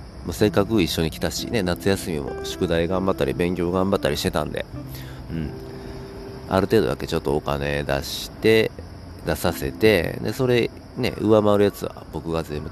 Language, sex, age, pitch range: Japanese, male, 40-59, 75-105 Hz